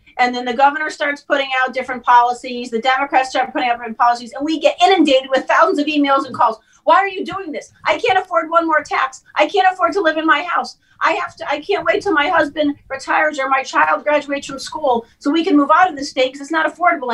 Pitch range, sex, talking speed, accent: 245-310 Hz, female, 255 wpm, American